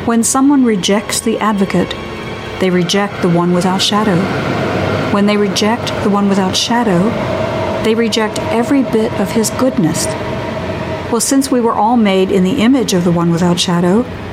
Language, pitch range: English, 170-215 Hz